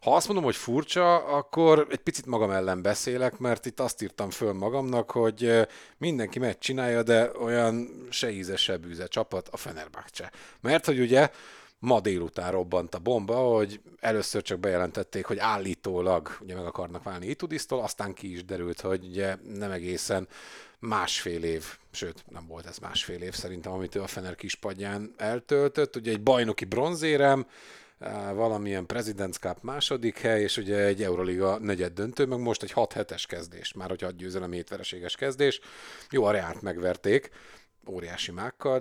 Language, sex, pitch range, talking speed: Hungarian, male, 95-125 Hz, 155 wpm